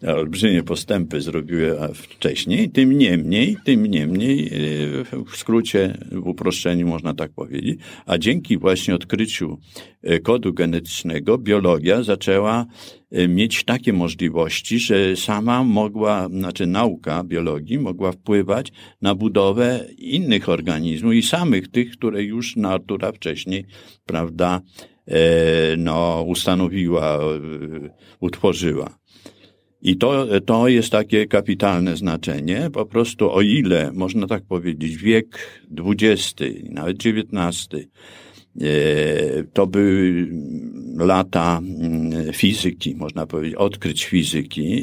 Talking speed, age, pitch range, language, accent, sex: 100 wpm, 50-69, 85-105 Hz, Polish, native, male